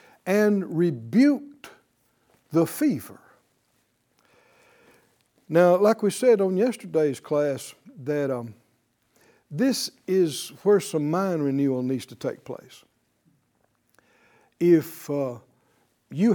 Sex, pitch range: male, 135-230 Hz